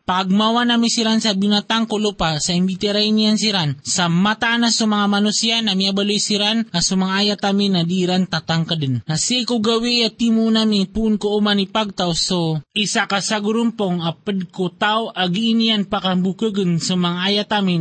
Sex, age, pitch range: male, 20-39, 185-215 Hz